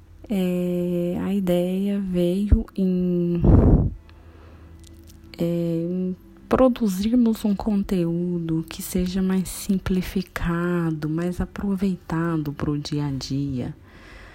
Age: 20-39